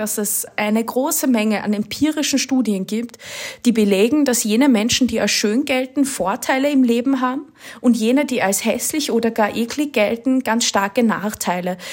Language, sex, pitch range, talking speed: German, female, 220-265 Hz, 170 wpm